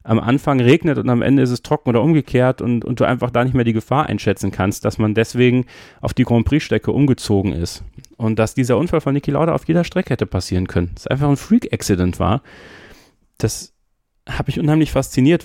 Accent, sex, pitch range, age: German, male, 110-135 Hz, 30-49